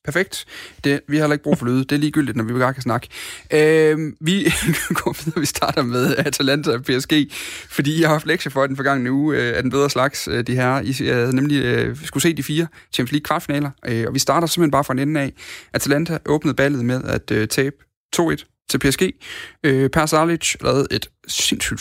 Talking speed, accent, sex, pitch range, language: 210 wpm, native, male, 125-155 Hz, Danish